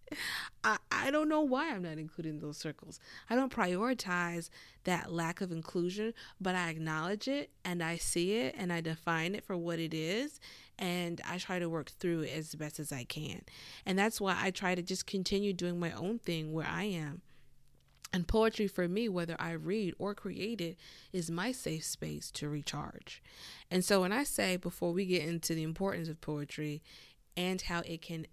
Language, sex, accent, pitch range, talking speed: English, female, American, 155-190 Hz, 195 wpm